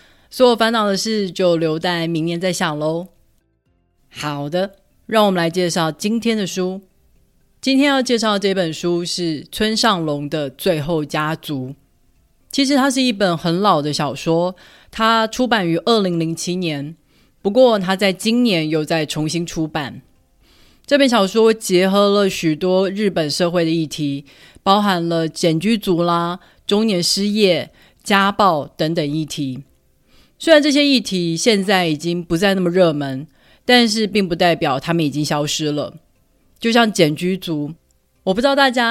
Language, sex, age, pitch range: Chinese, female, 30-49, 160-205 Hz